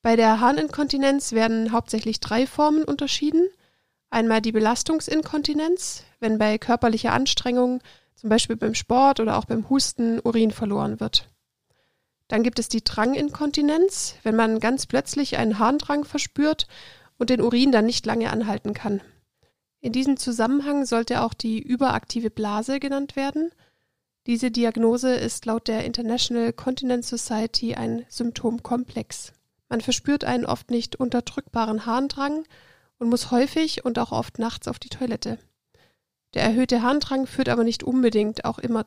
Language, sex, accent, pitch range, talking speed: German, female, German, 225-275 Hz, 140 wpm